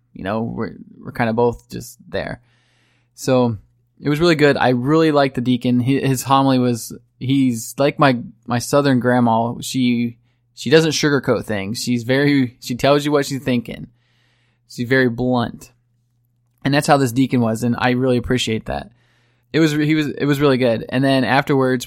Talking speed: 180 wpm